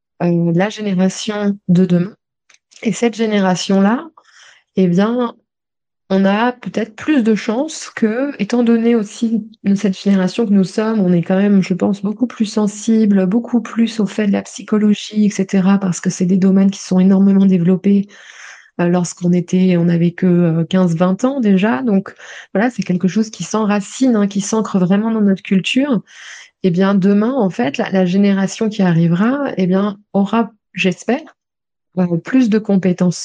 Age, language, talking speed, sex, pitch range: 20-39, French, 155 wpm, female, 185-225 Hz